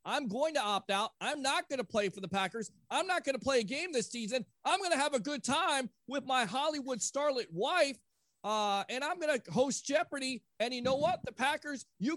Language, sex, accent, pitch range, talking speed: English, male, American, 185-260 Hz, 235 wpm